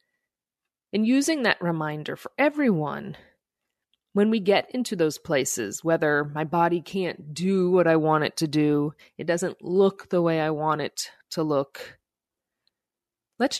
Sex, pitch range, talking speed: female, 160-215 Hz, 150 wpm